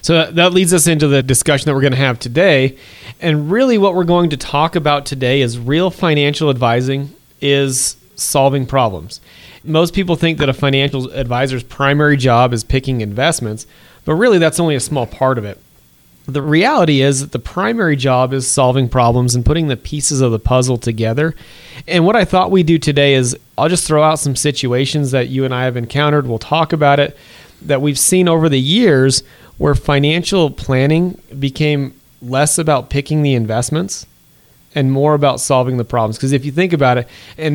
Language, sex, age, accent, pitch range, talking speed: English, male, 30-49, American, 125-155 Hz, 190 wpm